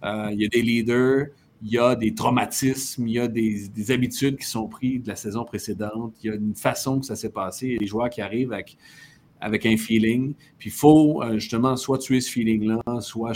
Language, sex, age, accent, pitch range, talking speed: French, male, 40-59, Canadian, 110-135 Hz, 245 wpm